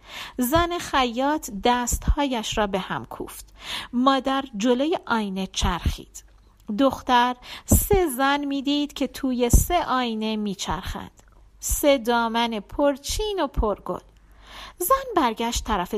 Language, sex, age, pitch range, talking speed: Persian, female, 40-59, 230-295 Hz, 105 wpm